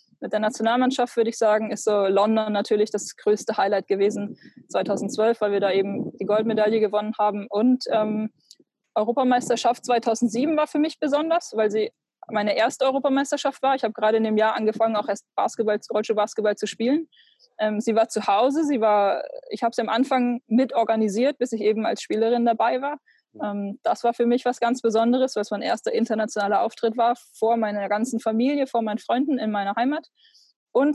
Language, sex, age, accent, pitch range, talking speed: German, female, 20-39, German, 215-245 Hz, 185 wpm